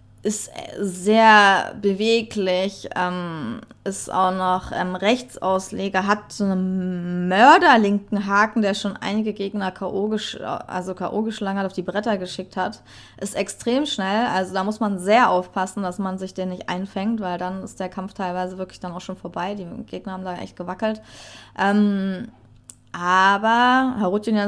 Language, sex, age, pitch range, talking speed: German, female, 20-39, 185-215 Hz, 145 wpm